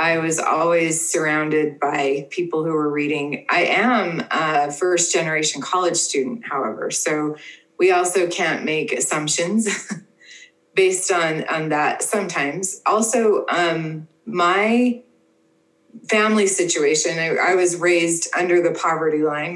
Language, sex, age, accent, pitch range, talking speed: English, female, 20-39, American, 150-180 Hz, 125 wpm